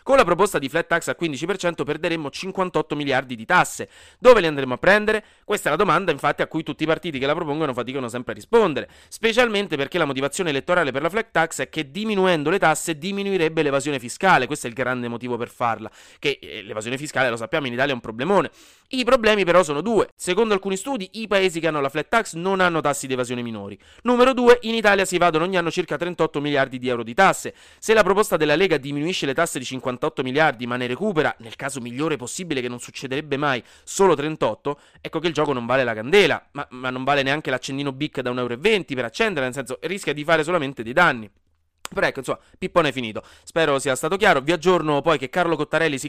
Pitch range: 130-185 Hz